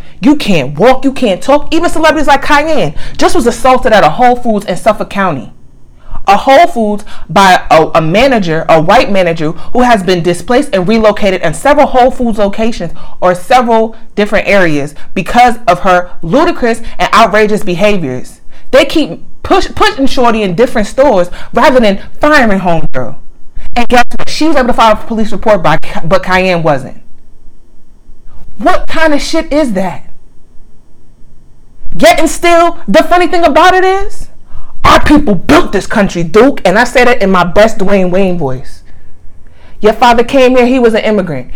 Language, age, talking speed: English, 30-49, 165 wpm